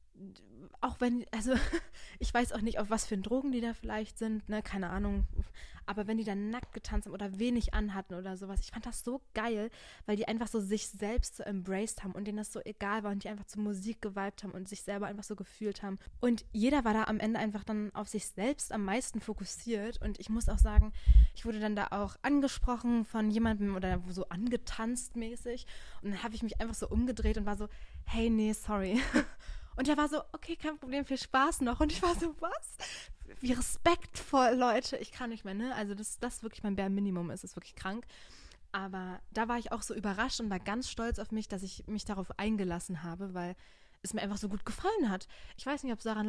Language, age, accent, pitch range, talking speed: German, 20-39, German, 195-235 Hz, 230 wpm